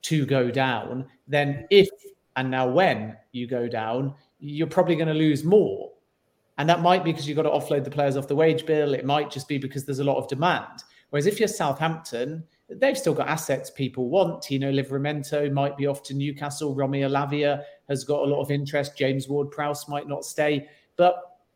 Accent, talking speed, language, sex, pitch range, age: British, 205 wpm, English, male, 135-165 Hz, 40-59